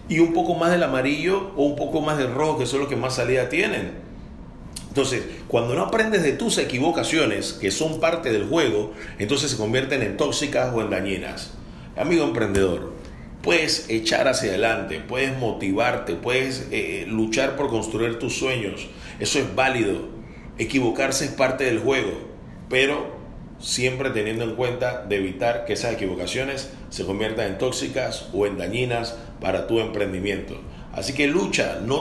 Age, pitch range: 40-59, 105-135 Hz